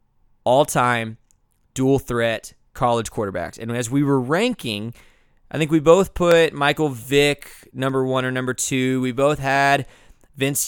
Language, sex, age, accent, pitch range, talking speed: English, male, 20-39, American, 115-145 Hz, 145 wpm